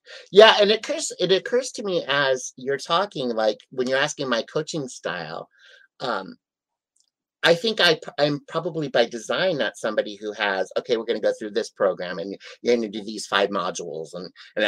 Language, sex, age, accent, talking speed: English, male, 30-49, American, 190 wpm